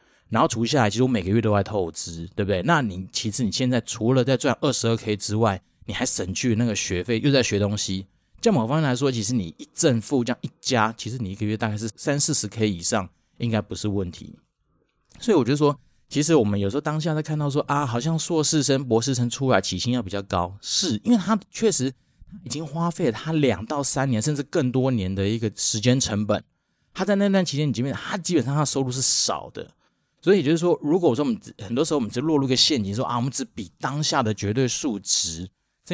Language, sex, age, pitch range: Chinese, male, 30-49, 105-140 Hz